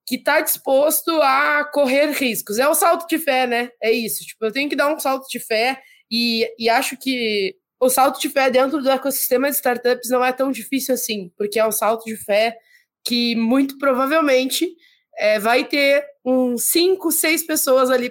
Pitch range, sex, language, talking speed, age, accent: 210-265 Hz, female, Portuguese, 190 wpm, 20-39, Brazilian